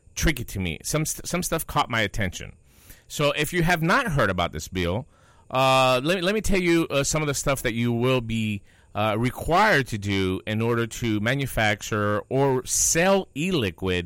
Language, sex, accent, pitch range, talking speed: English, male, American, 105-160 Hz, 195 wpm